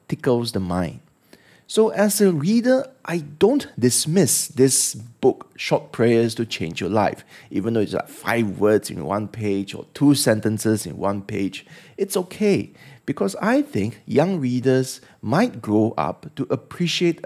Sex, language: male, English